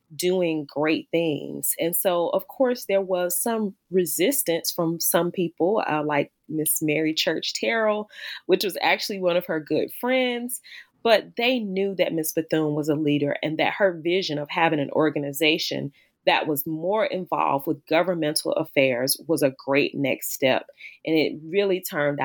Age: 30-49